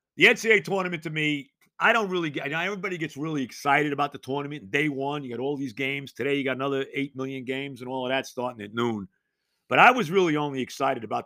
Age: 50-69